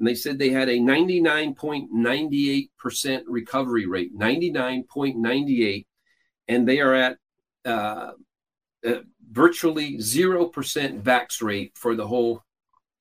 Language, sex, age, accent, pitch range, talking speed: English, male, 50-69, American, 120-165 Hz, 150 wpm